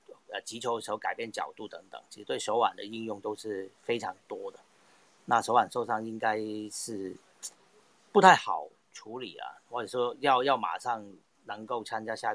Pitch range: 110-170 Hz